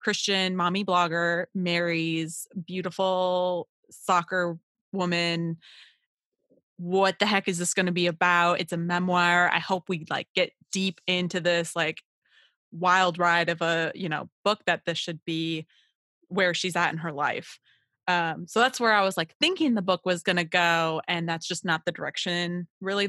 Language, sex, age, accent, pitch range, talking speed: English, female, 20-39, American, 170-195 Hz, 170 wpm